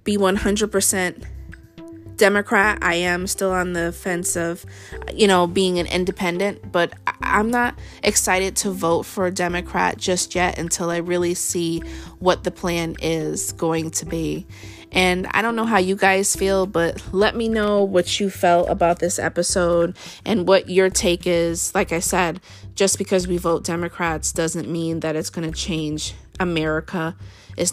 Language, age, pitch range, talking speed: English, 20-39, 160-190 Hz, 165 wpm